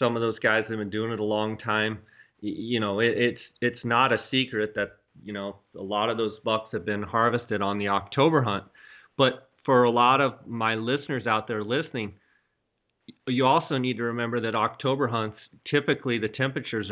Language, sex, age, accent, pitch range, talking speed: English, male, 30-49, American, 105-125 Hz, 190 wpm